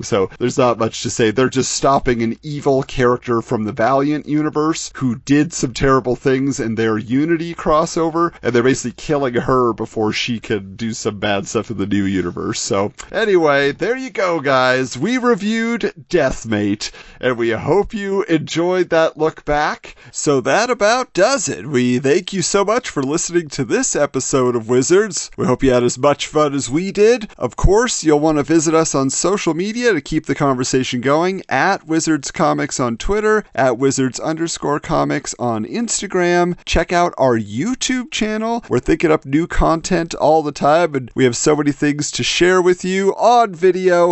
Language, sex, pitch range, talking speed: English, male, 125-175 Hz, 185 wpm